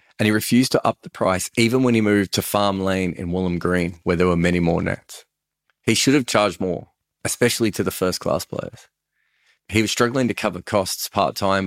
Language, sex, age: English, male, 30-49